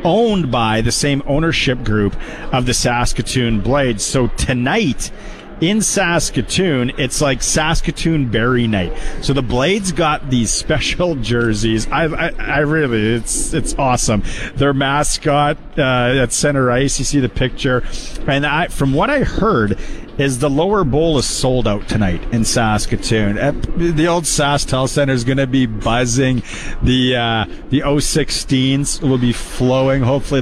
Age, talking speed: 40-59, 150 wpm